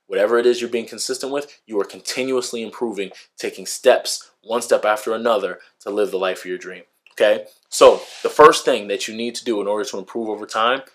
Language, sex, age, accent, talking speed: English, male, 20-39, American, 220 wpm